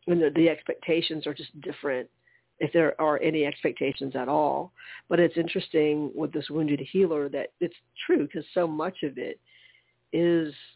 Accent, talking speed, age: American, 165 wpm, 50-69